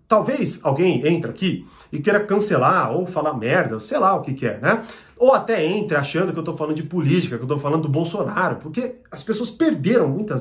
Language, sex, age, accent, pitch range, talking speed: Portuguese, male, 40-59, Brazilian, 140-210 Hz, 225 wpm